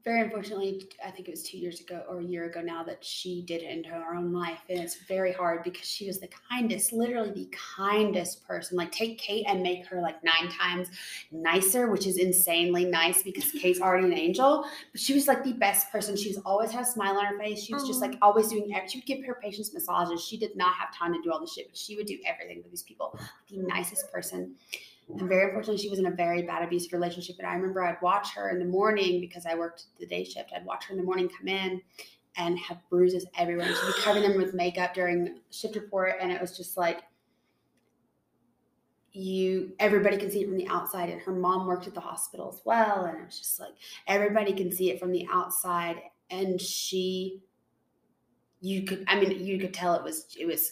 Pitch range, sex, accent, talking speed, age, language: 175-205 Hz, female, American, 235 wpm, 20-39, English